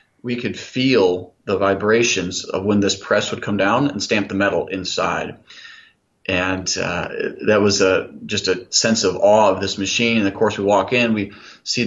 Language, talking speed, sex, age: English, 190 wpm, male, 30-49